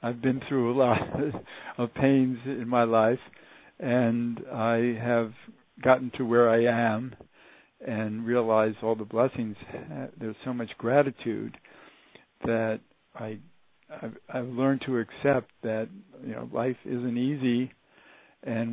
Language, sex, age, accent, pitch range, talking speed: English, male, 60-79, American, 110-125 Hz, 130 wpm